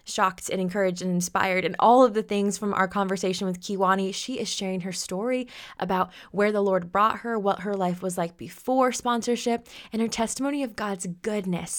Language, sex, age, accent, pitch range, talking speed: English, female, 20-39, American, 185-235 Hz, 200 wpm